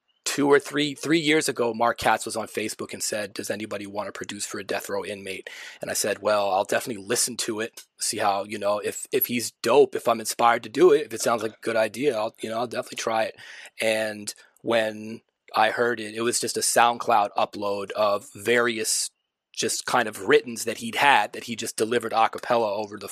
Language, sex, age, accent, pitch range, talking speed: English, male, 20-39, American, 110-150 Hz, 225 wpm